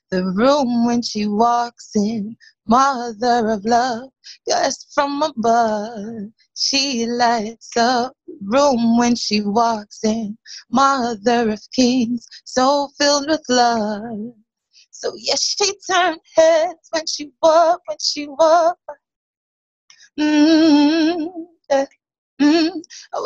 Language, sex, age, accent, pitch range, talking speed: English, female, 20-39, American, 275-350 Hz, 110 wpm